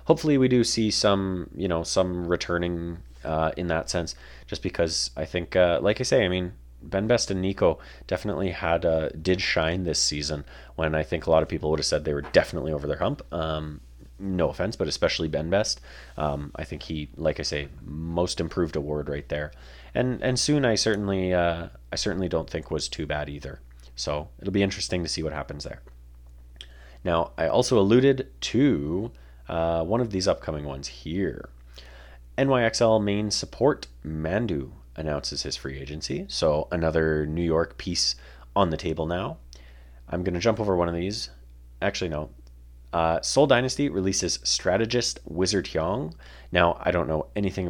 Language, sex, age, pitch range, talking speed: English, male, 30-49, 70-95 Hz, 180 wpm